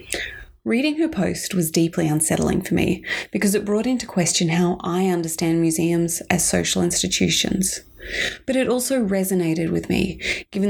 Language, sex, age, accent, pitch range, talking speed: English, female, 20-39, Australian, 170-190 Hz, 150 wpm